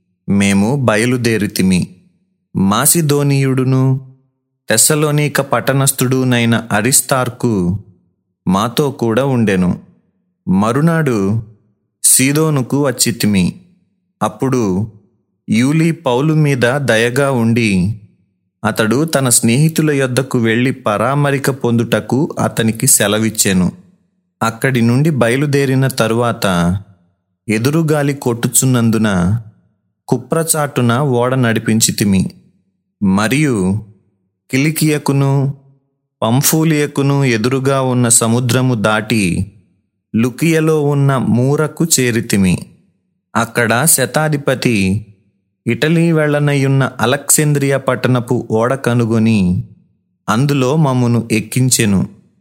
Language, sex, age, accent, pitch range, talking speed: Telugu, male, 30-49, native, 110-140 Hz, 65 wpm